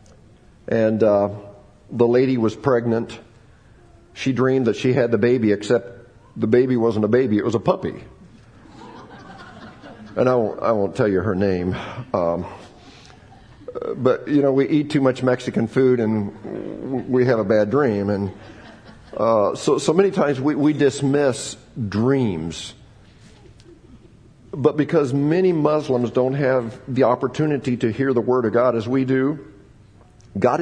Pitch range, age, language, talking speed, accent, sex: 110-140 Hz, 50-69, English, 145 wpm, American, male